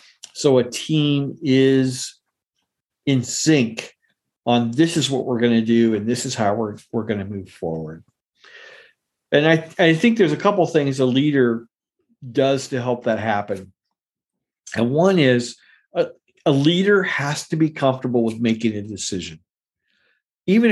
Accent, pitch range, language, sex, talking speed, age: American, 120-160 Hz, English, male, 155 wpm, 50-69